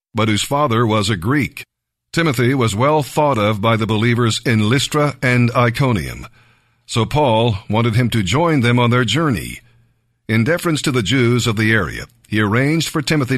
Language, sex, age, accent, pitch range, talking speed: English, male, 50-69, American, 115-135 Hz, 180 wpm